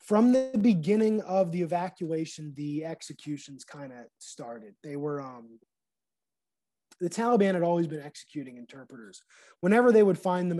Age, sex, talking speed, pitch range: 20-39, male, 145 wpm, 150-190 Hz